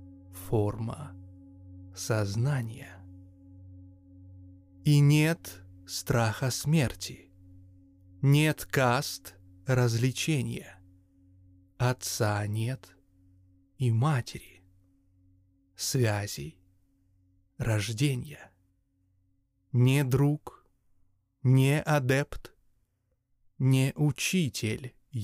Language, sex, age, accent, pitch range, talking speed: Russian, male, 30-49, native, 90-130 Hz, 50 wpm